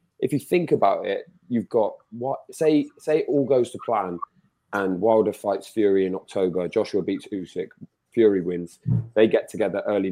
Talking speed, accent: 180 wpm, British